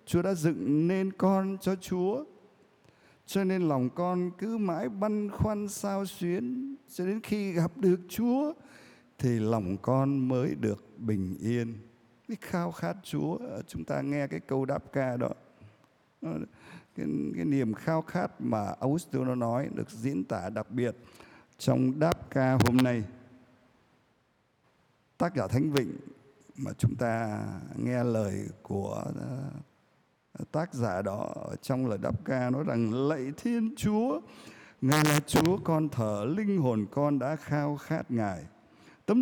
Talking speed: 145 wpm